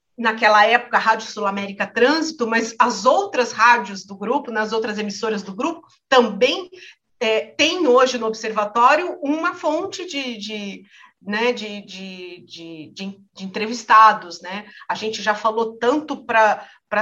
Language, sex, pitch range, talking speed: Portuguese, female, 205-250 Hz, 125 wpm